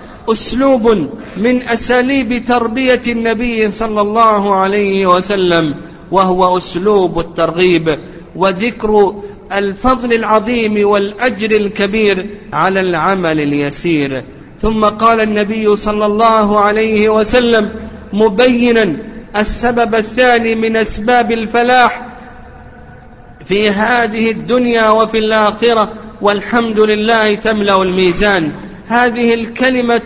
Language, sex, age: Arabic, male, 50-69